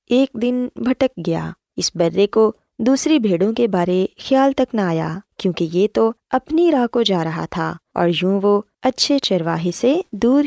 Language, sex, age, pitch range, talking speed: Urdu, female, 20-39, 170-245 Hz, 170 wpm